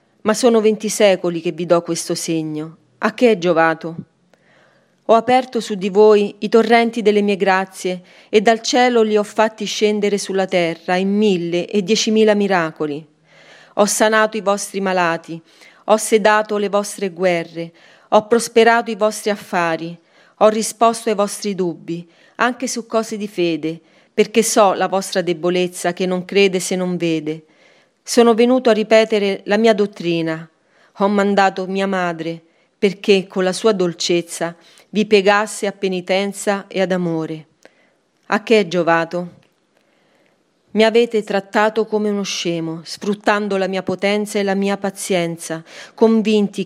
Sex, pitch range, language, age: female, 175-215 Hz, Italian, 40-59